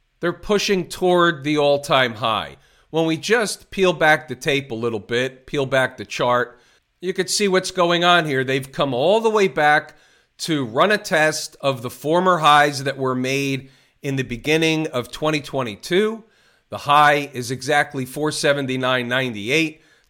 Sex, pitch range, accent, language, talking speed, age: male, 135-160 Hz, American, English, 160 wpm, 40-59